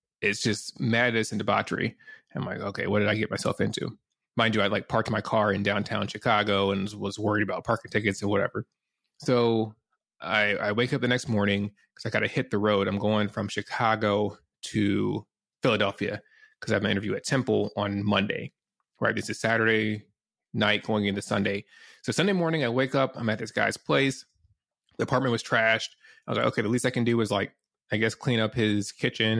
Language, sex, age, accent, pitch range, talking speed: English, male, 20-39, American, 100-120 Hz, 210 wpm